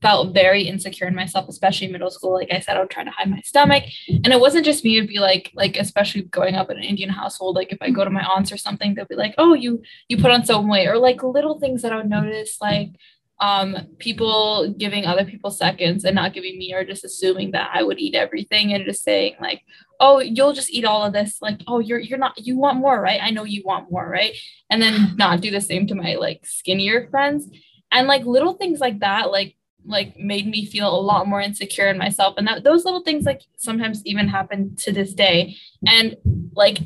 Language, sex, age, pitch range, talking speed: English, female, 10-29, 190-225 Hz, 245 wpm